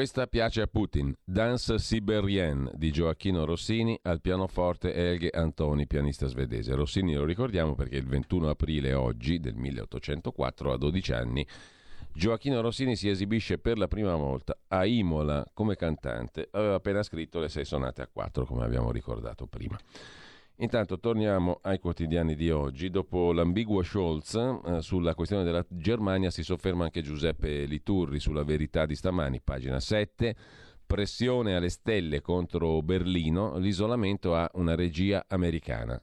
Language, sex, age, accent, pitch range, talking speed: Italian, male, 40-59, native, 75-100 Hz, 145 wpm